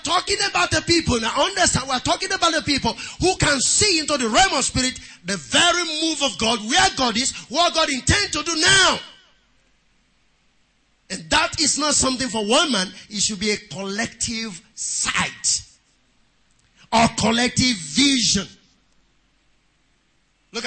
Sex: male